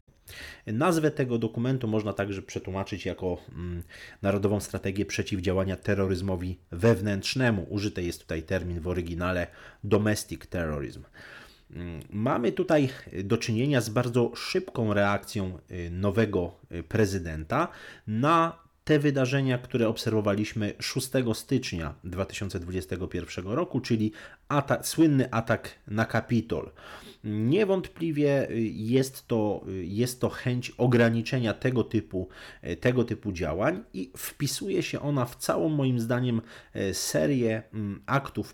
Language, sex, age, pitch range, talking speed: Polish, male, 30-49, 95-125 Hz, 105 wpm